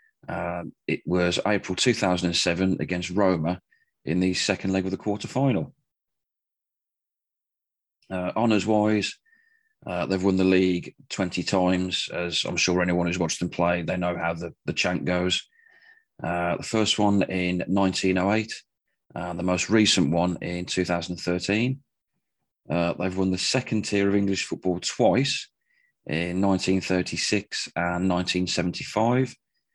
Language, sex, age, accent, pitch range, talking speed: English, male, 30-49, British, 90-110 Hz, 130 wpm